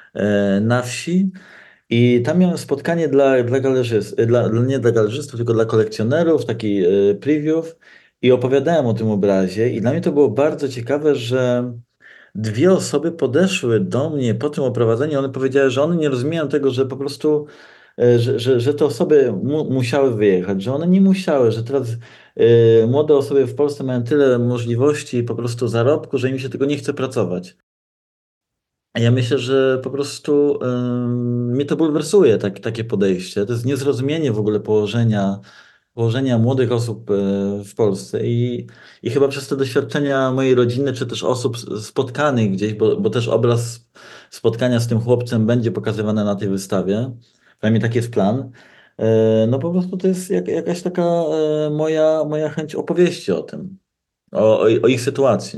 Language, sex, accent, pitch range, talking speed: Polish, male, native, 115-145 Hz, 165 wpm